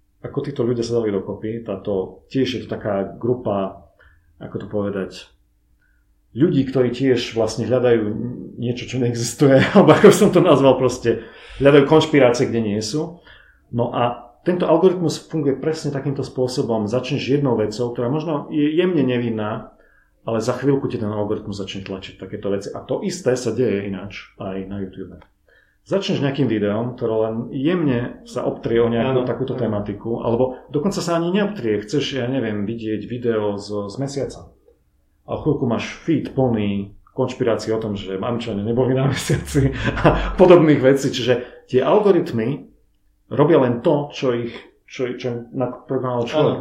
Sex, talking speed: male, 155 wpm